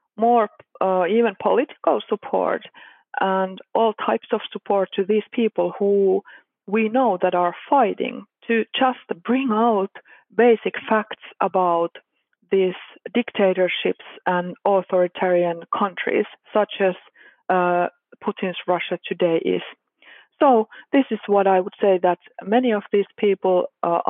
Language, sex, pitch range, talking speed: Swedish, female, 185-230 Hz, 125 wpm